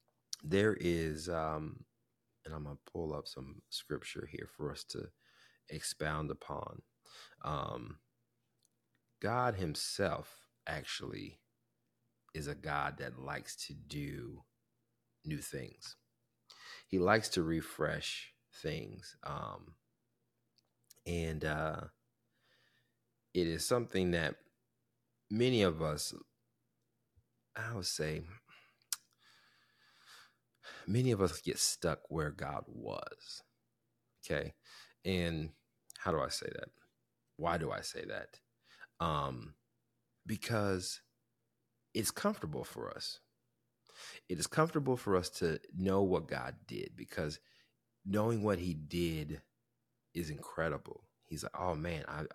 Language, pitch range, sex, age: English, 80-120 Hz, male, 30-49